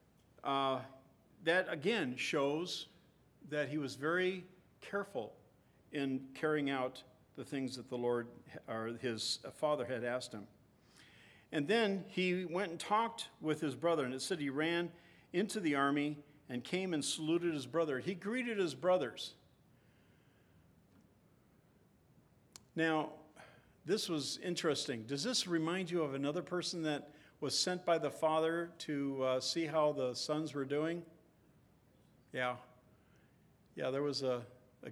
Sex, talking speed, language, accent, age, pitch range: male, 140 wpm, English, American, 50-69, 125-170 Hz